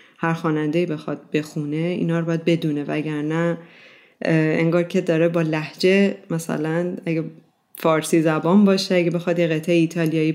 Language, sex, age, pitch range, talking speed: Persian, female, 30-49, 155-180 Hz, 140 wpm